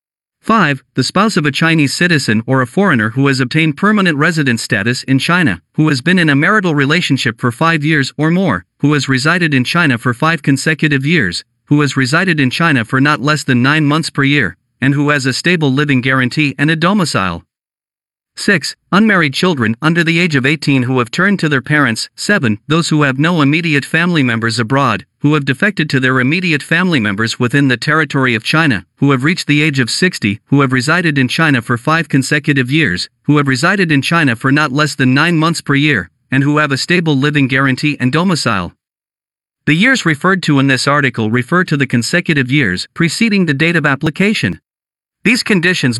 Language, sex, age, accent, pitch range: Chinese, male, 50-69, American, 130-165 Hz